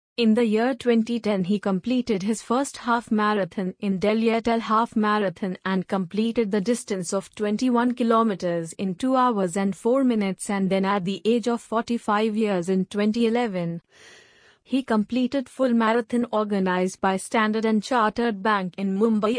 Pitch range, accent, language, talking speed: 200-245 Hz, native, Hindi, 155 wpm